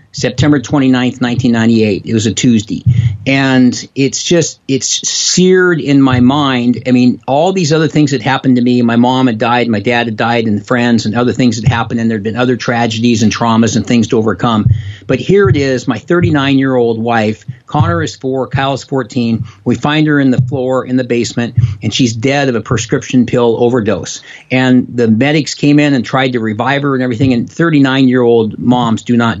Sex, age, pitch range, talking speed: male, 50-69, 120-140 Hz, 210 wpm